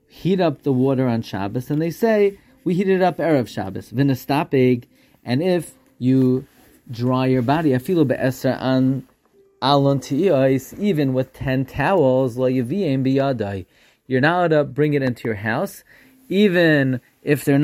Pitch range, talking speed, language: 125-150 Hz, 135 wpm, English